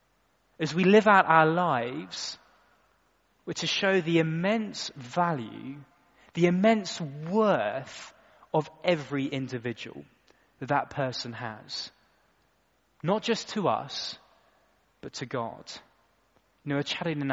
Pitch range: 140-180 Hz